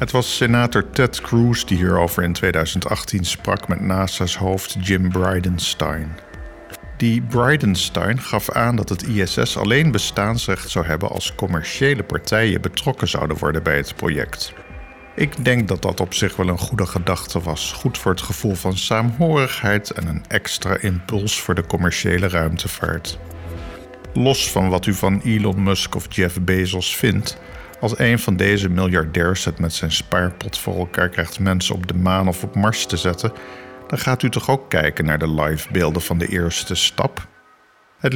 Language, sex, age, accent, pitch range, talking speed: Dutch, male, 50-69, Dutch, 90-110 Hz, 165 wpm